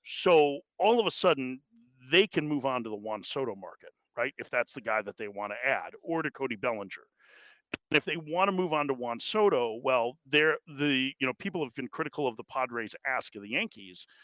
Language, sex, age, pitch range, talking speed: English, male, 40-59, 135-175 Hz, 230 wpm